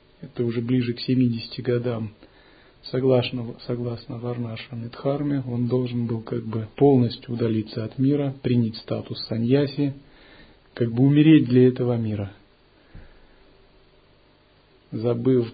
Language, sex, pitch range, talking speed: Russian, male, 115-135 Hz, 110 wpm